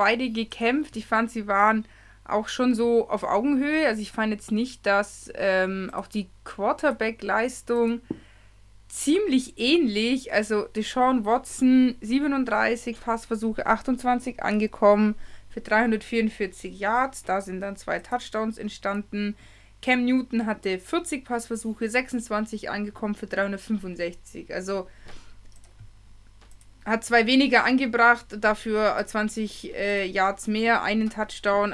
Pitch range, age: 195-235 Hz, 20-39